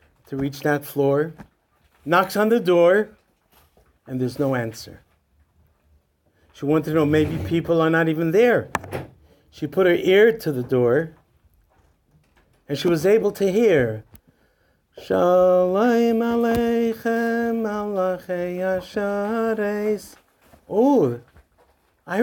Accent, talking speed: American, 105 wpm